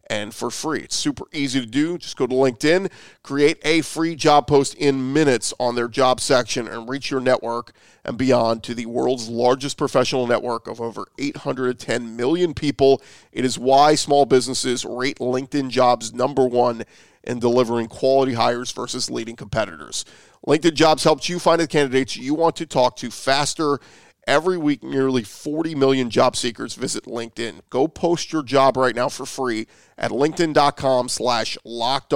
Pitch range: 125-145 Hz